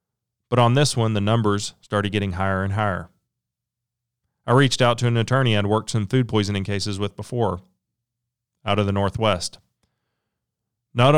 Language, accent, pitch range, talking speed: English, American, 100-120 Hz, 160 wpm